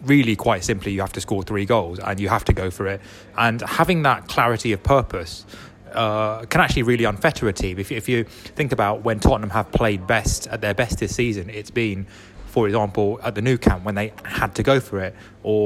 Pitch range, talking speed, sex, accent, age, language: 100-125 Hz, 230 wpm, male, British, 20-39, English